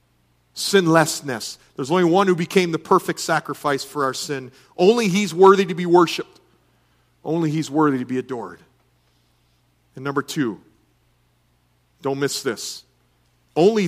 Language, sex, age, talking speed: English, male, 40-59, 135 wpm